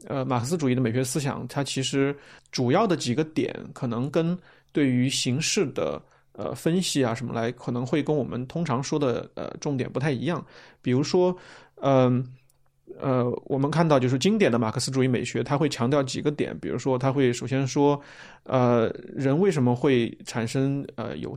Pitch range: 125-155 Hz